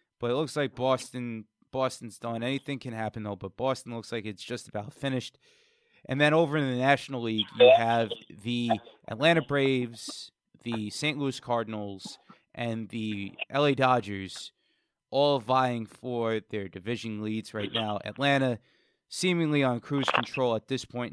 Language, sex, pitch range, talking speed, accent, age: English, male, 110-135 Hz, 155 wpm, American, 20-39